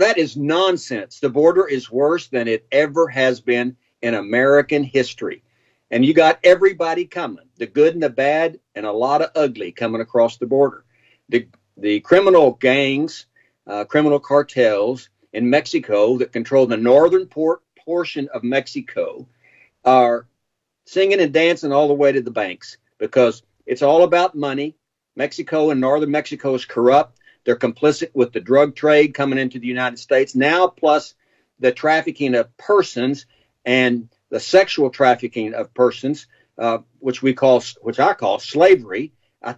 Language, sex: English, male